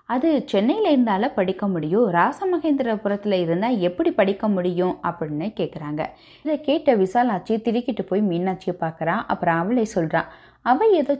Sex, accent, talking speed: female, native, 130 wpm